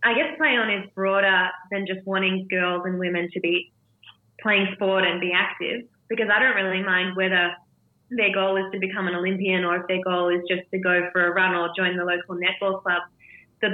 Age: 20-39